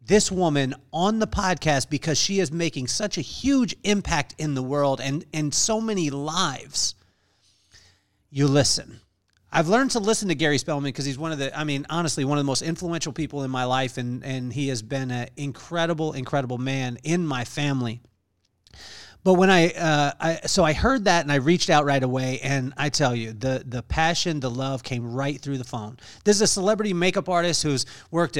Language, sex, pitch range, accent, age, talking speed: English, male, 125-165 Hz, American, 40-59, 205 wpm